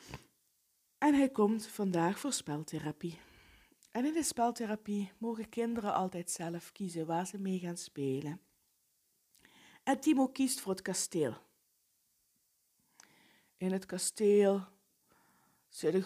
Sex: female